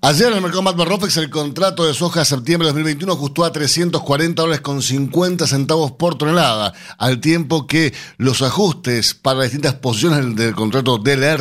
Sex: male